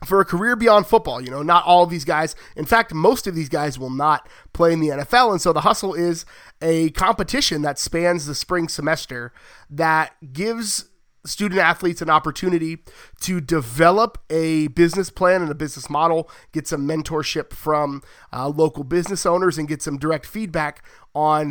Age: 30-49